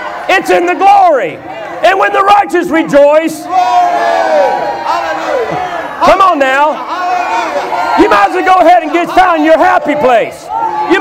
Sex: male